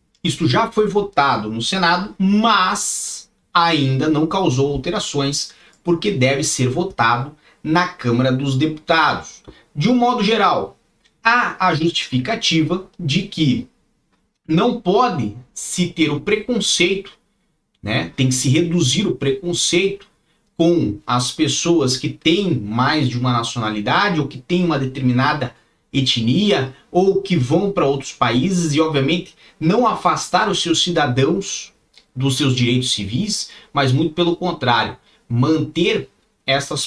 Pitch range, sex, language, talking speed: 135-185 Hz, male, Portuguese, 130 wpm